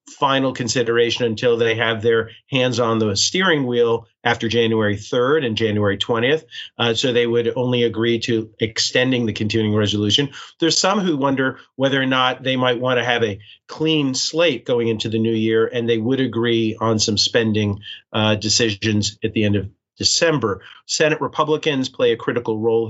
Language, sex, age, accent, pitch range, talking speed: English, male, 40-59, American, 110-130 Hz, 180 wpm